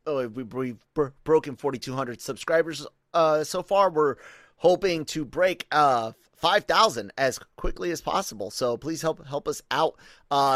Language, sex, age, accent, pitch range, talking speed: English, male, 30-49, American, 125-155 Hz, 140 wpm